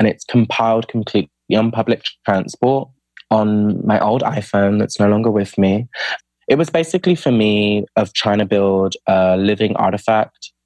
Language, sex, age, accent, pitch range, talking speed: English, male, 20-39, British, 95-110 Hz, 160 wpm